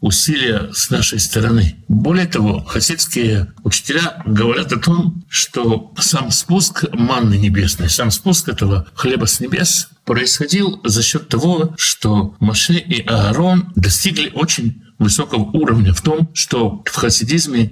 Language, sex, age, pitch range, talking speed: Russian, male, 60-79, 100-150 Hz, 130 wpm